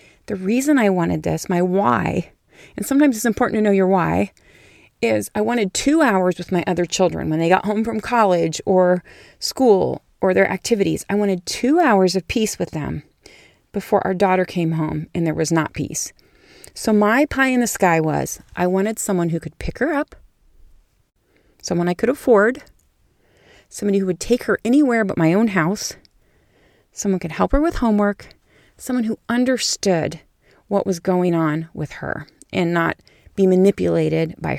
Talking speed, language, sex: 175 wpm, English, female